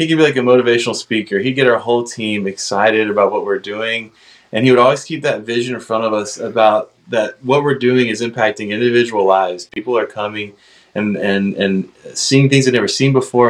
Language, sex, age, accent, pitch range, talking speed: English, male, 20-39, American, 105-125 Hz, 220 wpm